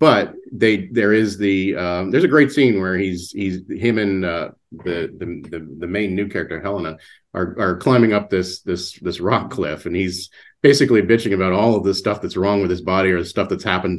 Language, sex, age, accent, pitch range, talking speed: English, male, 40-59, American, 90-115 Hz, 220 wpm